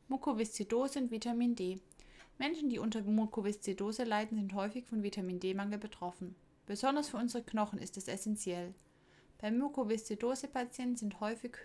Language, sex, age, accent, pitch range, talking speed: German, female, 20-39, German, 195-245 Hz, 130 wpm